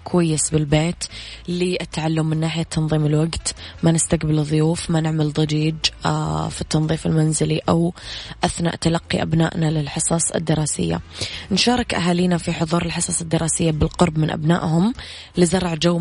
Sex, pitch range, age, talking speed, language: female, 155-170 Hz, 20-39, 130 wpm, Arabic